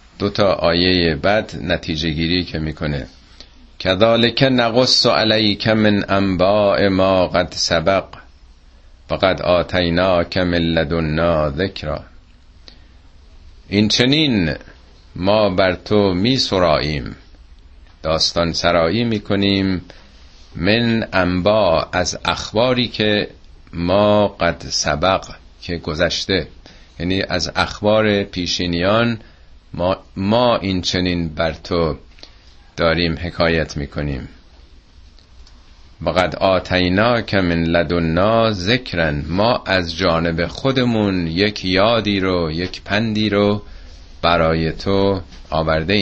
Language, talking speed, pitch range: Persian, 90 wpm, 80-100 Hz